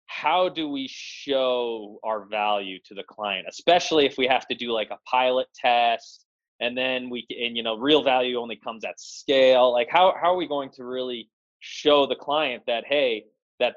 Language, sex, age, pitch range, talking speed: English, male, 20-39, 110-135 Hz, 195 wpm